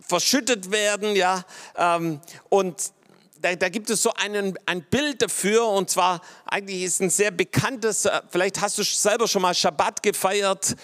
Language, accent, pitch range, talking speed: German, German, 170-210 Hz, 165 wpm